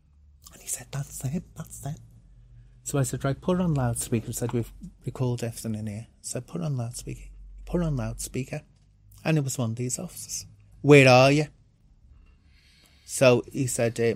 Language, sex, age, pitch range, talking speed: English, male, 30-49, 105-130 Hz, 190 wpm